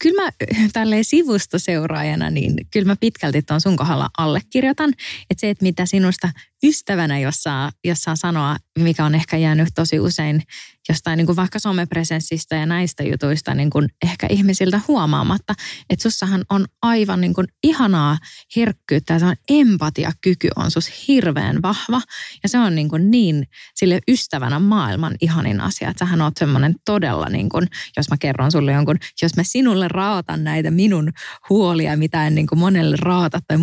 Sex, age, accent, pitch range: female, 20-39, Finnish, 155-200 Hz